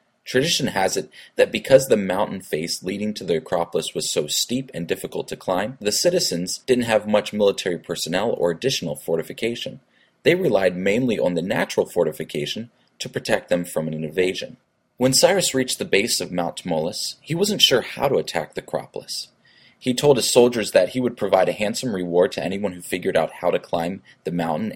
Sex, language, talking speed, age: male, English, 190 wpm, 30-49